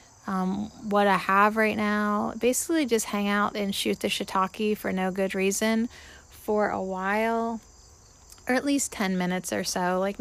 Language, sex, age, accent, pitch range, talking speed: English, female, 20-39, American, 190-220 Hz, 170 wpm